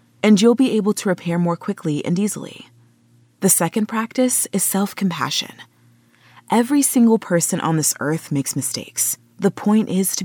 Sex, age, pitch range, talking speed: female, 20-39, 160-215 Hz, 160 wpm